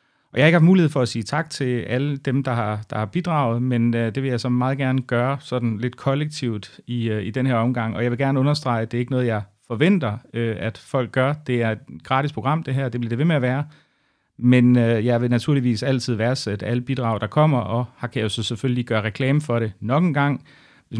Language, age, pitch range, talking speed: Danish, 30-49, 115-135 Hz, 265 wpm